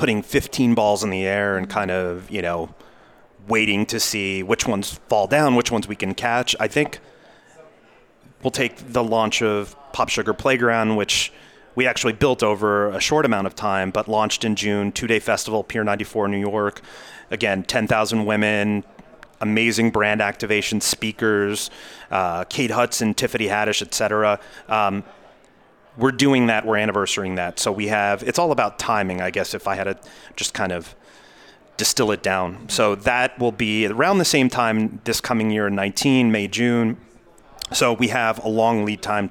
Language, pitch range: English, 105-120 Hz